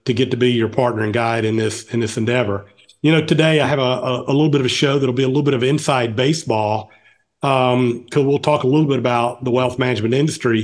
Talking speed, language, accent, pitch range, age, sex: 260 wpm, English, American, 120-145 Hz, 40-59, male